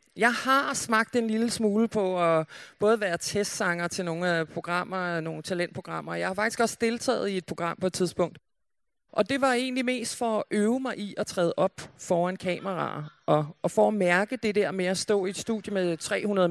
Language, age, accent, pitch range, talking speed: Danish, 30-49, native, 180-220 Hz, 205 wpm